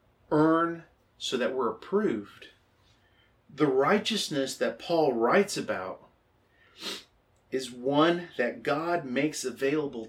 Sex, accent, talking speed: male, American, 100 wpm